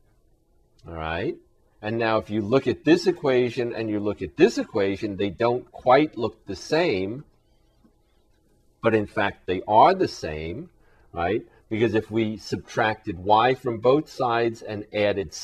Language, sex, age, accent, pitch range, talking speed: English, male, 40-59, American, 100-130 Hz, 155 wpm